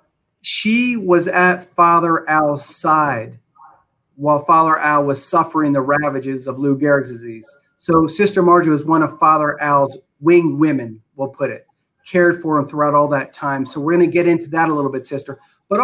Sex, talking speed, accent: male, 185 wpm, American